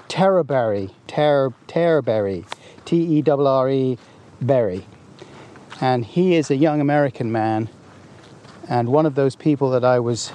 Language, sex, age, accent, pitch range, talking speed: English, male, 40-59, British, 120-155 Hz, 135 wpm